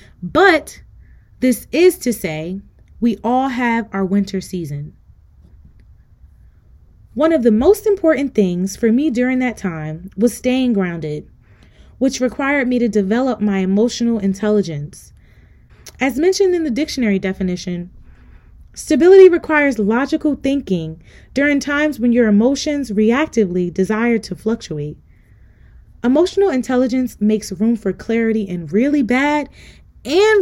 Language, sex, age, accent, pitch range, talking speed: English, female, 20-39, American, 185-275 Hz, 120 wpm